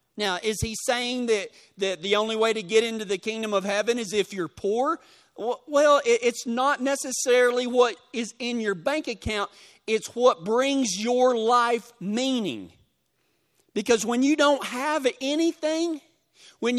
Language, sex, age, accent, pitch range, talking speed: English, male, 40-59, American, 220-270 Hz, 155 wpm